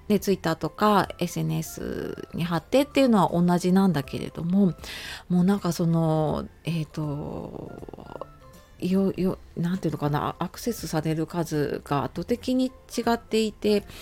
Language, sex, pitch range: Japanese, female, 165-235 Hz